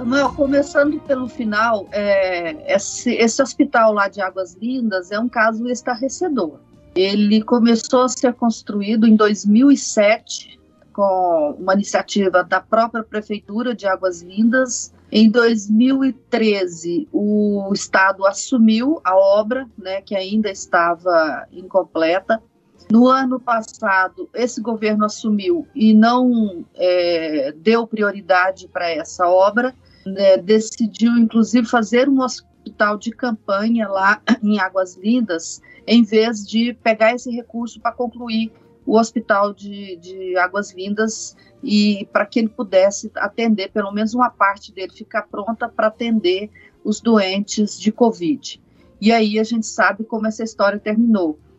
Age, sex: 40-59, female